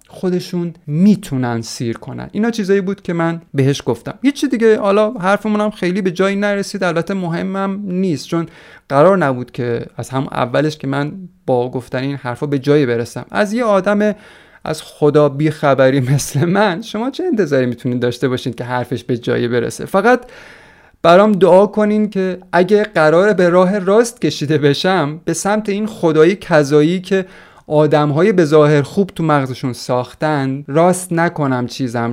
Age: 30-49